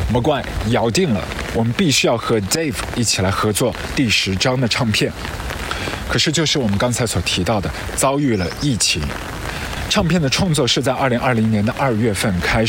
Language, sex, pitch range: Chinese, male, 105-150 Hz